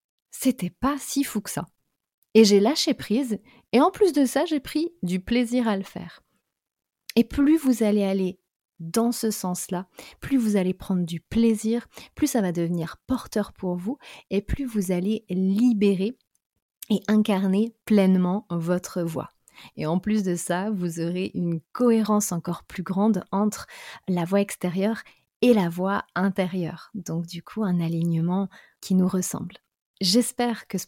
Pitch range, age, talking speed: 175-220 Hz, 30-49, 165 wpm